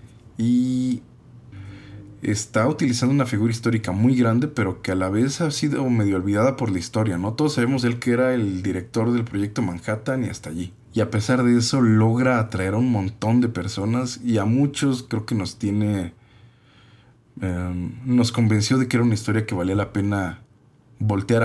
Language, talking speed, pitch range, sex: Spanish, 185 wpm, 105-125 Hz, male